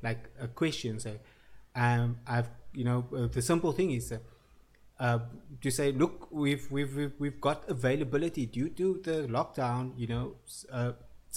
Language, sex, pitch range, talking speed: English, male, 115-145 Hz, 160 wpm